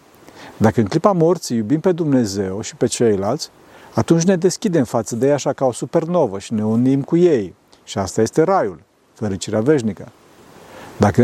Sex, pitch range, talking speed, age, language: male, 125-180 Hz, 170 wpm, 50-69, Romanian